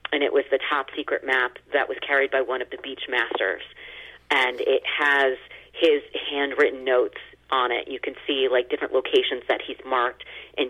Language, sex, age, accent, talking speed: English, female, 40-59, American, 190 wpm